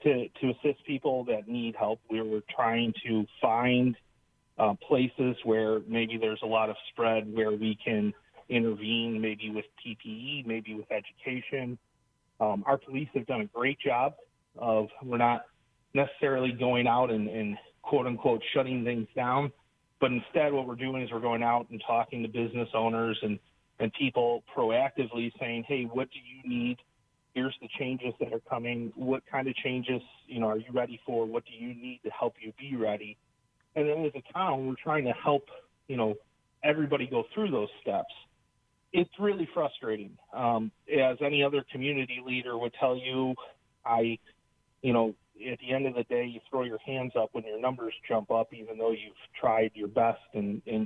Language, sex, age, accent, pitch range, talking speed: English, male, 30-49, American, 115-135 Hz, 185 wpm